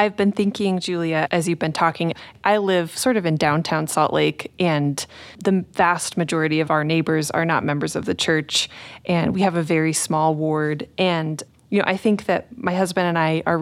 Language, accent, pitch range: English, American, 155-195 Hz